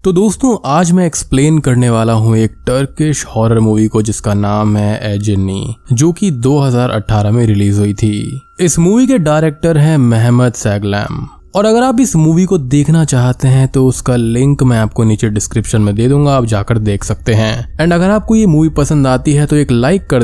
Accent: native